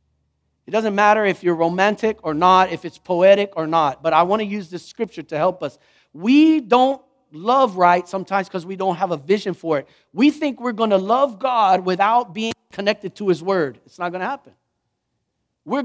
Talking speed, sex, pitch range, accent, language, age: 210 wpm, male, 160-240 Hz, American, English, 40-59